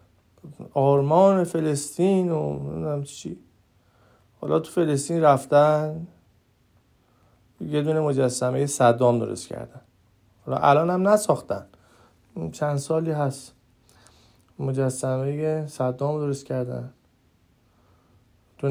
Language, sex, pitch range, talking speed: Persian, male, 125-160 Hz, 80 wpm